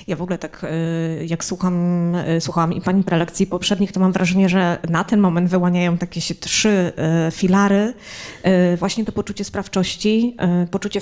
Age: 20-39